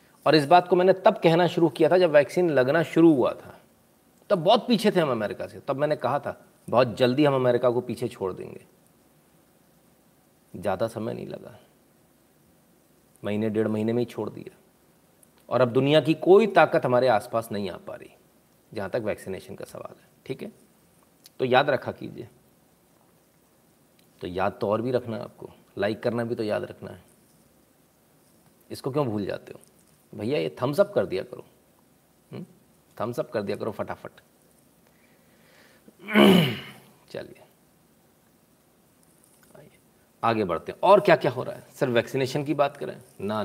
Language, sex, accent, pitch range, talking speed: Hindi, male, native, 125-180 Hz, 160 wpm